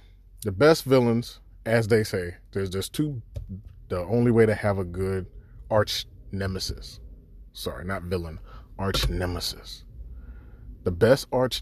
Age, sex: 30-49, male